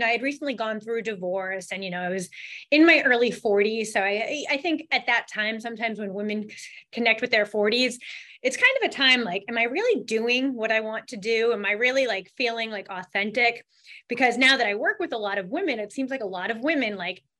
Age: 20-39